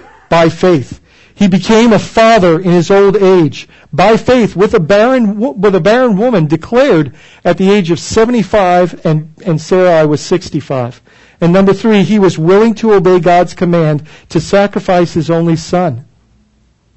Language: English